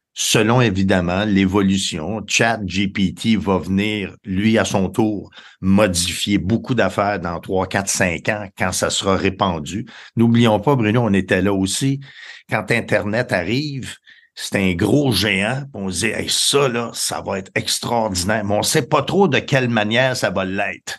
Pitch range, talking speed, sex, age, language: 95-120 Hz, 170 wpm, male, 50-69, French